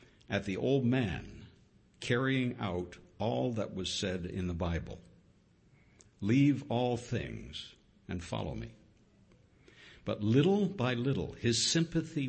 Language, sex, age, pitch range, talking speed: English, male, 60-79, 95-130 Hz, 120 wpm